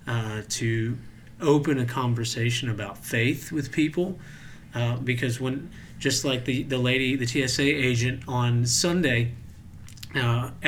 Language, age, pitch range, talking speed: English, 40-59, 120-140 Hz, 130 wpm